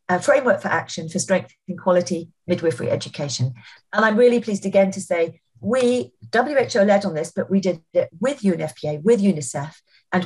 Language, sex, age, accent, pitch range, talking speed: English, female, 50-69, British, 155-200 Hz, 175 wpm